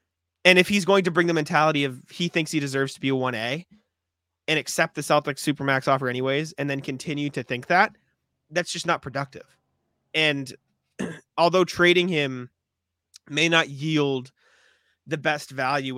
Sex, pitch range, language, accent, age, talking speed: male, 125-160 Hz, English, American, 20-39, 160 wpm